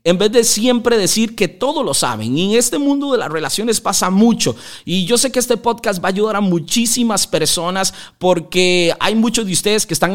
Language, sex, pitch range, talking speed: Spanish, male, 165-205 Hz, 220 wpm